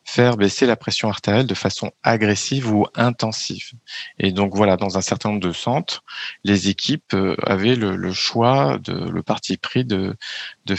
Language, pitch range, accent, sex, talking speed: French, 100-125 Hz, French, male, 170 wpm